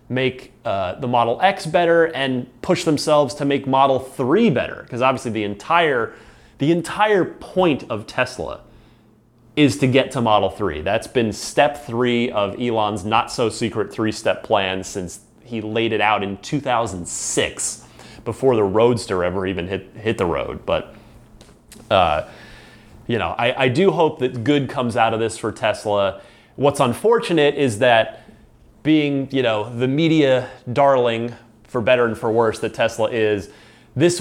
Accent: American